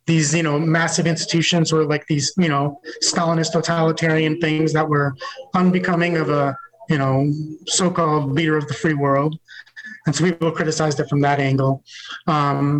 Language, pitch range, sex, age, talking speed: English, 150-170 Hz, male, 30-49, 165 wpm